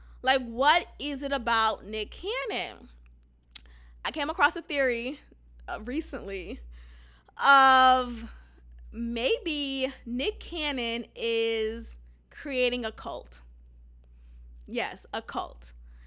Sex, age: female, 20-39